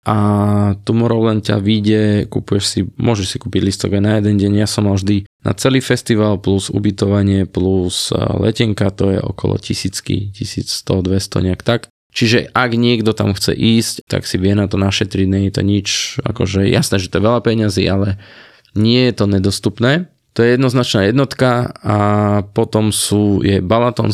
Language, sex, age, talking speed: Slovak, male, 20-39, 170 wpm